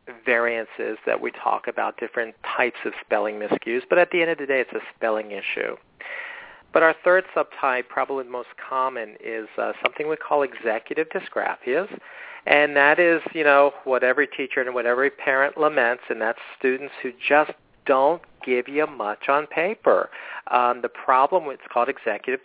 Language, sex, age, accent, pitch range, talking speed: English, male, 50-69, American, 120-160 Hz, 175 wpm